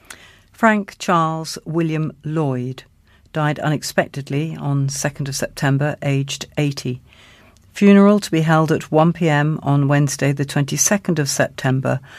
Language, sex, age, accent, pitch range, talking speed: English, female, 60-79, British, 135-165 Hz, 120 wpm